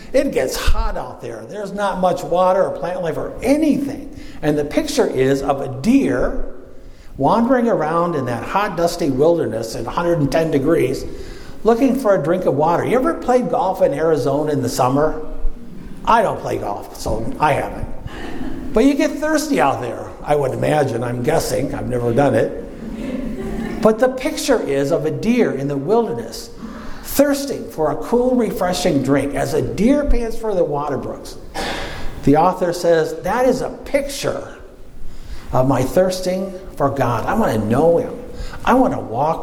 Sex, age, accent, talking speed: male, 60-79, American, 170 wpm